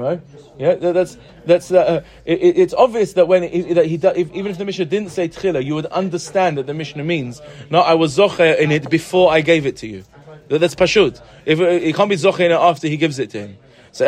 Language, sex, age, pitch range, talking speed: English, male, 20-39, 155-200 Hz, 225 wpm